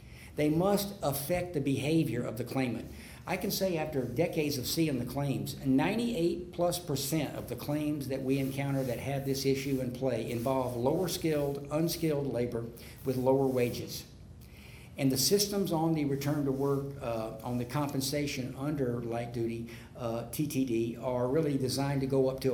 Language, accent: English, American